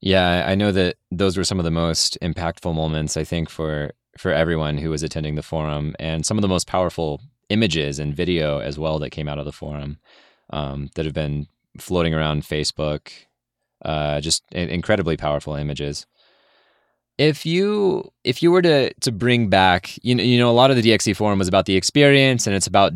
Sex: male